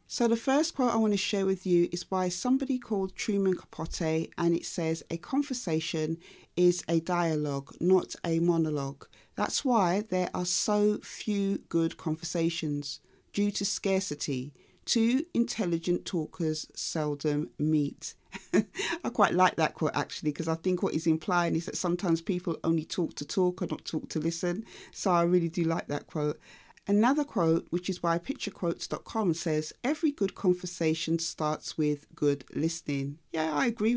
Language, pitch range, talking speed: English, 160-200 Hz, 165 wpm